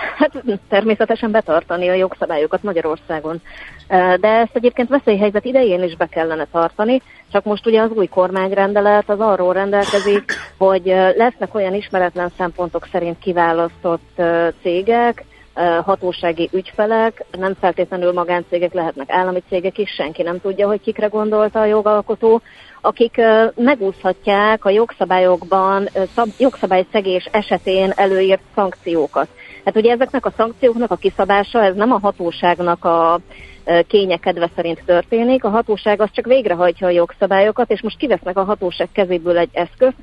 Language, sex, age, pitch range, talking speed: Hungarian, female, 30-49, 180-215 Hz, 130 wpm